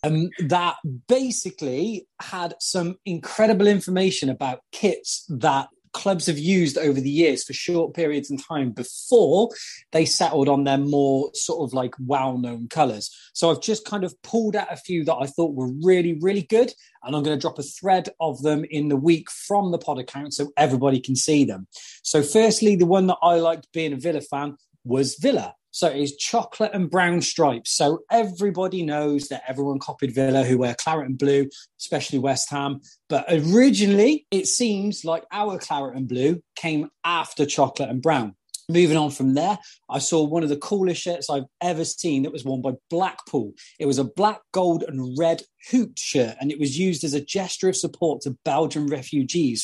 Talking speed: 190 wpm